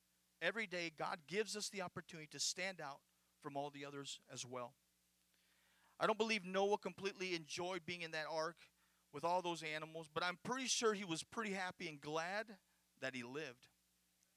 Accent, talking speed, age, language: American, 180 wpm, 40-59, English